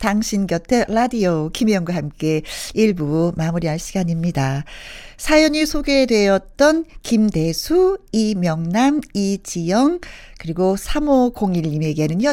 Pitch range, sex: 170-240 Hz, female